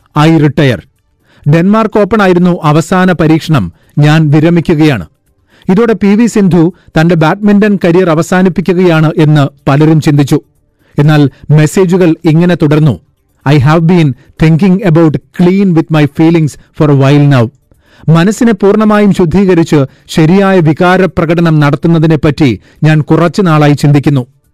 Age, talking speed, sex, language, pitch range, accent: 40-59, 110 wpm, male, Malayalam, 145-180 Hz, native